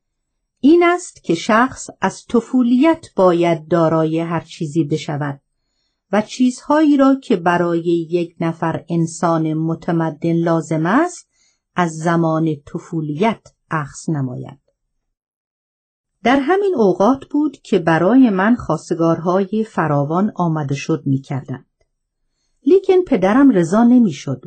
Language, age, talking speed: Persian, 50-69, 105 wpm